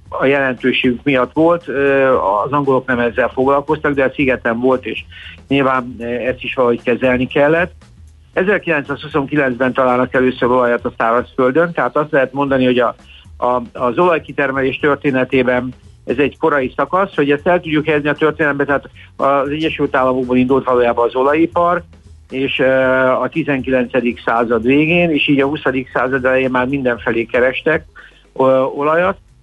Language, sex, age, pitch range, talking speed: Hungarian, male, 60-79, 120-145 Hz, 145 wpm